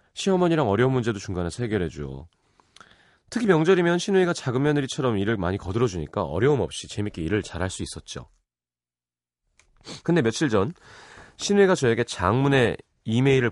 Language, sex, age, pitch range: Korean, male, 30-49, 90-130 Hz